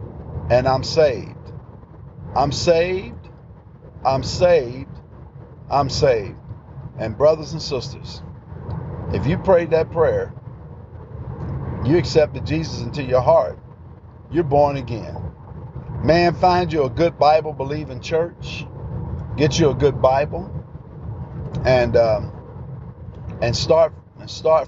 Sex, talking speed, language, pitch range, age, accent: male, 110 wpm, English, 120-155 Hz, 50-69, American